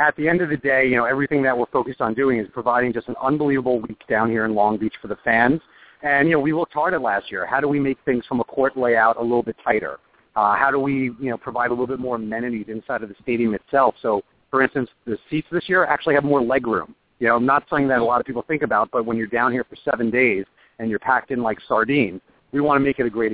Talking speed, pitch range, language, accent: 285 wpm, 110-135 Hz, English, American